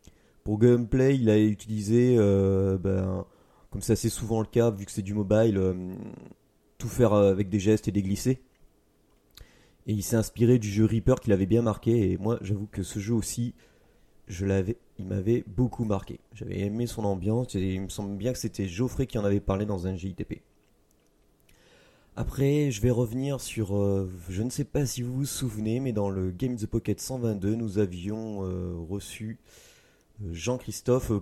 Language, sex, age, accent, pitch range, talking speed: French, male, 30-49, French, 95-120 Hz, 190 wpm